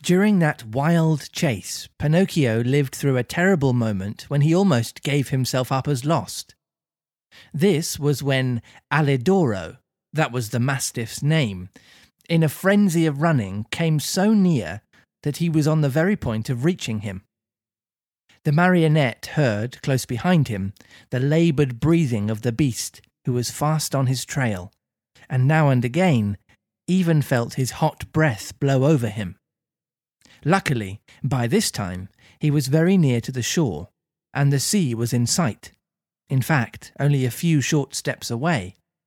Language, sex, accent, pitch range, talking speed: English, male, British, 120-160 Hz, 155 wpm